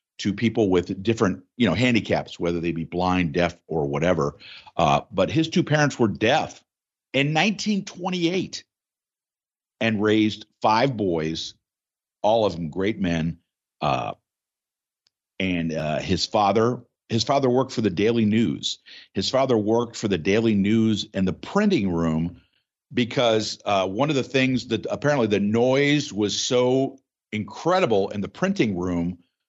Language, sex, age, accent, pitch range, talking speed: English, male, 50-69, American, 85-115 Hz, 145 wpm